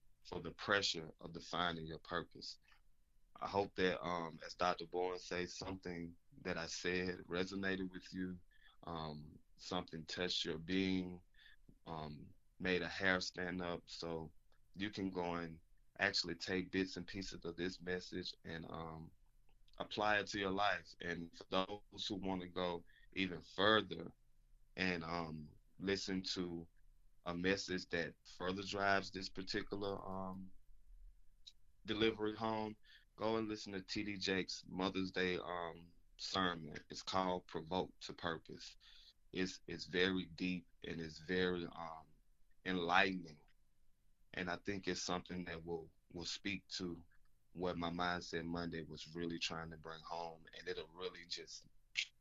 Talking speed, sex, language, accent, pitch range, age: 145 wpm, male, English, American, 80-95 Hz, 20-39